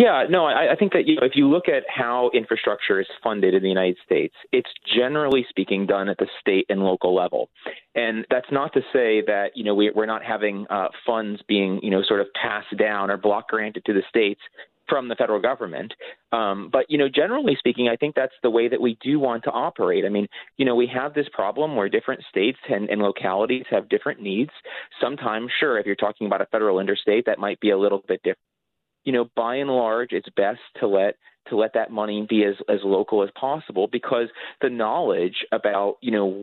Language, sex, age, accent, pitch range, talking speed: English, male, 30-49, American, 100-130 Hz, 220 wpm